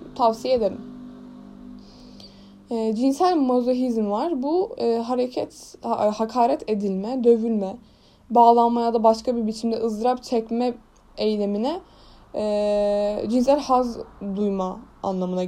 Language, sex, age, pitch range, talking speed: Turkish, female, 10-29, 205-285 Hz, 100 wpm